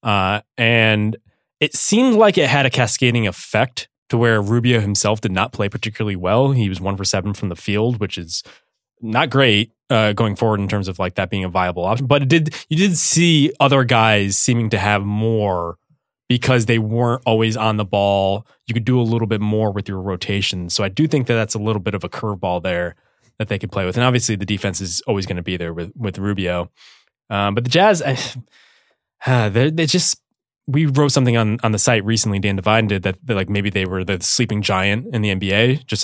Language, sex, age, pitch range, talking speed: English, male, 20-39, 100-125 Hz, 225 wpm